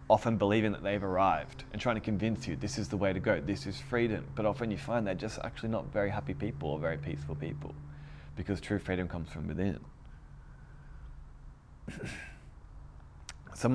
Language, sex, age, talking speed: English, male, 20-39, 180 wpm